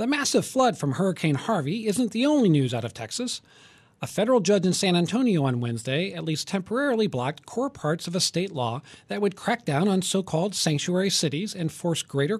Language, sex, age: English, male, 40-59